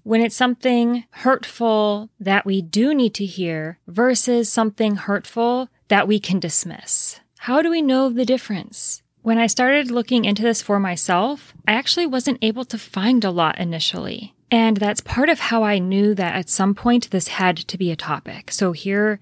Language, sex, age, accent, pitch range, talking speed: English, female, 30-49, American, 195-240 Hz, 185 wpm